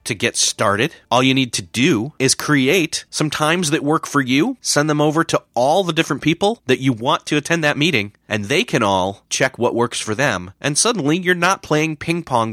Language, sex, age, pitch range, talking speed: English, male, 30-49, 110-150 Hz, 225 wpm